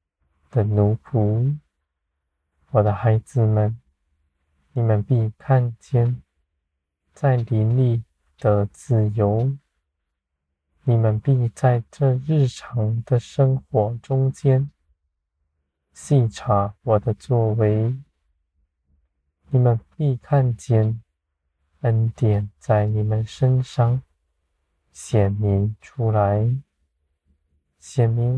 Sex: male